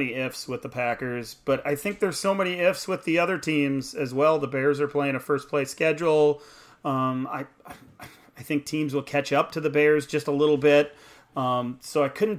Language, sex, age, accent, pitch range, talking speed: English, male, 30-49, American, 125-155 Hz, 220 wpm